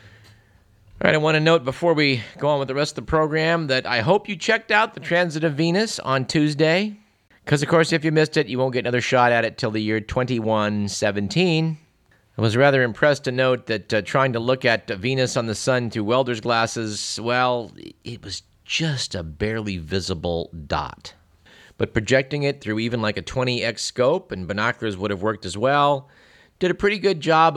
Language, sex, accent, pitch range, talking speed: English, male, American, 105-145 Hz, 205 wpm